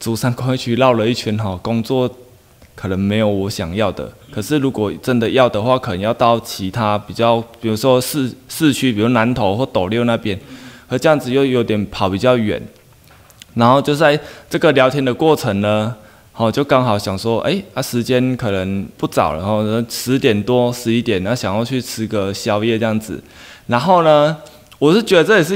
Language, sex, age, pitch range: Chinese, male, 20-39, 110-145 Hz